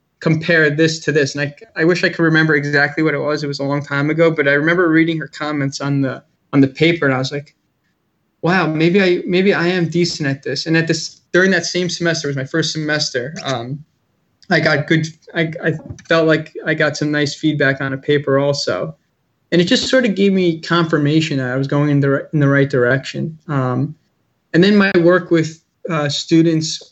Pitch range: 140-165 Hz